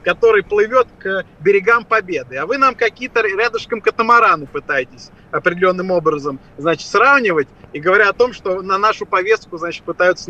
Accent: native